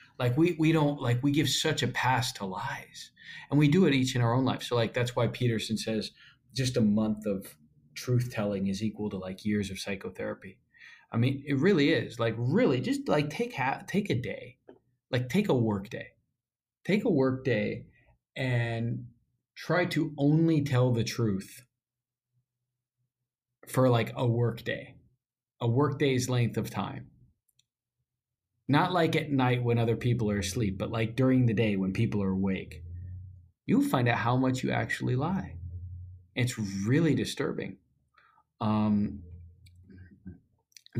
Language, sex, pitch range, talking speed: English, male, 110-130 Hz, 165 wpm